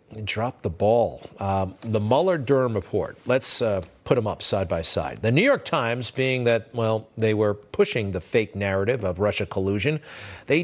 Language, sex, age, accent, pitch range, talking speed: English, male, 50-69, American, 110-155 Hz, 185 wpm